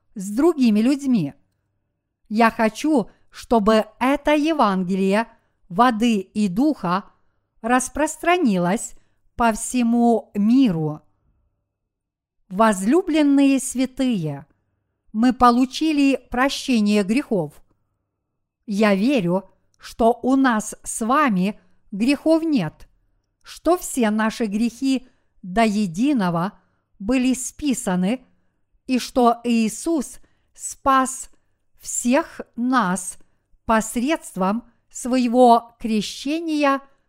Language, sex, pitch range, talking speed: Russian, female, 195-260 Hz, 75 wpm